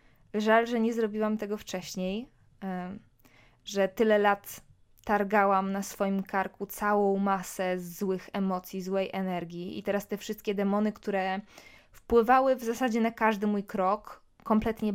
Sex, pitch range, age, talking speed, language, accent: female, 185-215 Hz, 20-39, 135 wpm, Polish, native